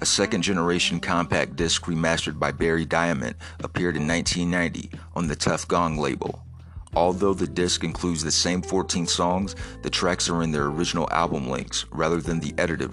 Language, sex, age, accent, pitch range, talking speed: English, male, 40-59, American, 80-90 Hz, 170 wpm